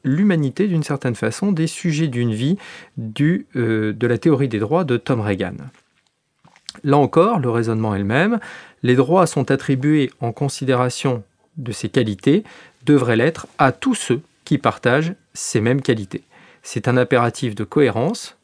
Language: French